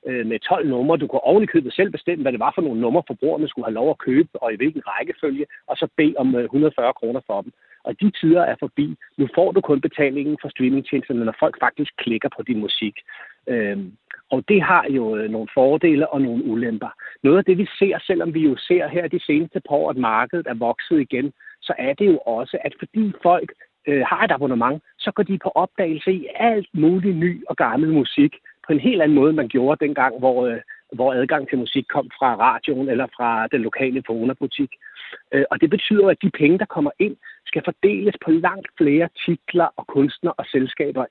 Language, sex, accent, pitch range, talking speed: Danish, male, native, 135-200 Hz, 205 wpm